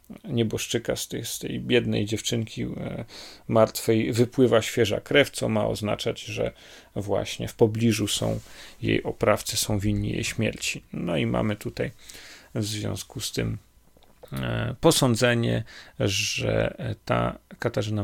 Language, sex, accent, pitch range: Polish, male, native, 105-120 Hz